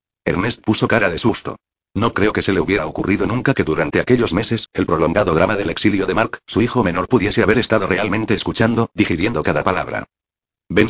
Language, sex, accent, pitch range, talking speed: Spanish, male, Spanish, 95-115 Hz, 200 wpm